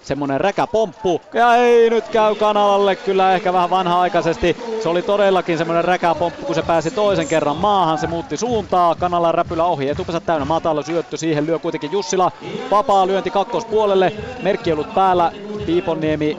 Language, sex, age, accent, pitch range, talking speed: Finnish, male, 30-49, native, 130-175 Hz, 165 wpm